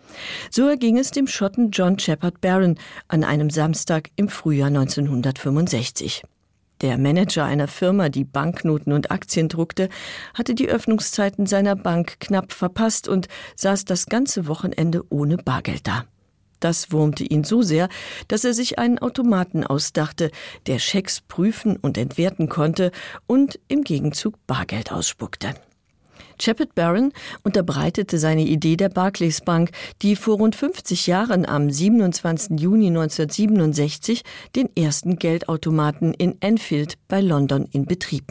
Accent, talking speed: German, 135 wpm